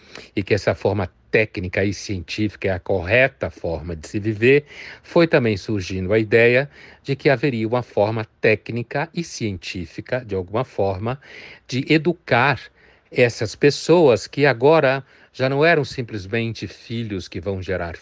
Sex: male